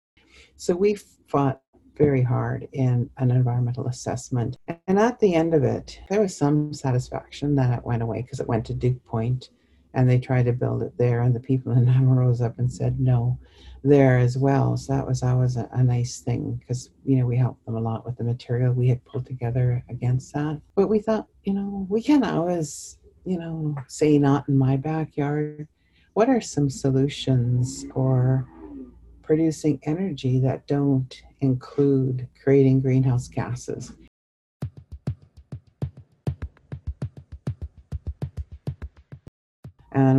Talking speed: 155 wpm